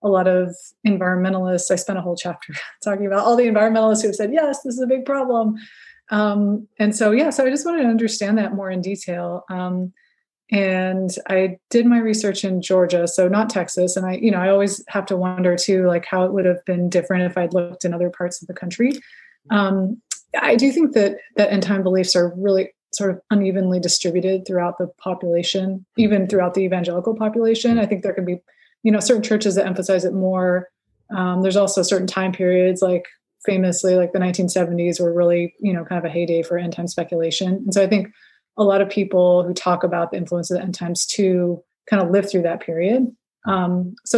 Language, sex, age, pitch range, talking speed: English, female, 30-49, 180-205 Hz, 215 wpm